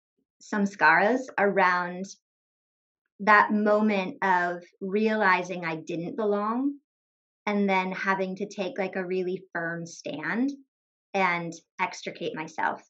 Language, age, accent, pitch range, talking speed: English, 20-39, American, 175-220 Hz, 100 wpm